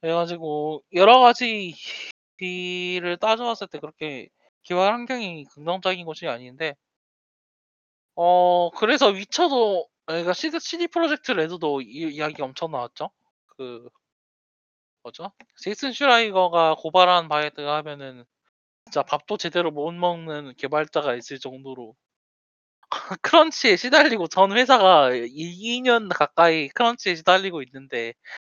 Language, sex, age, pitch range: Korean, male, 20-39, 140-210 Hz